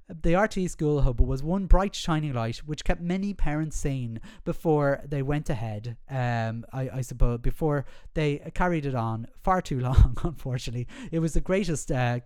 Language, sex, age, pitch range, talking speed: English, male, 30-49, 120-155 Hz, 175 wpm